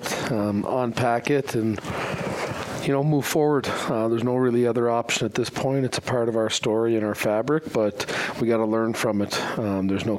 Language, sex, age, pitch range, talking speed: English, male, 40-59, 100-125 Hz, 210 wpm